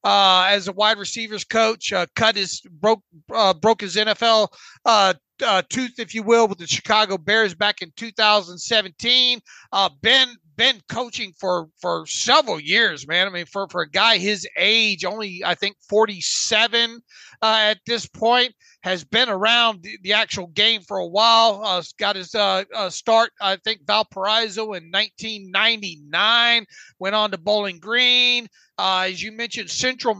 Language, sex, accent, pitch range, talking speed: English, male, American, 195-235 Hz, 165 wpm